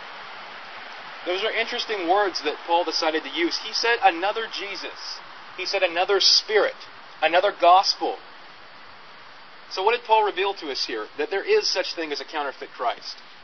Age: 30-49